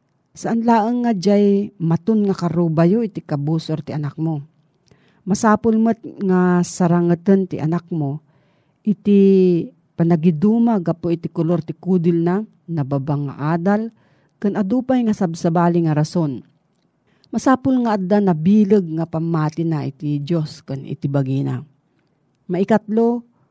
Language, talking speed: Filipino, 125 wpm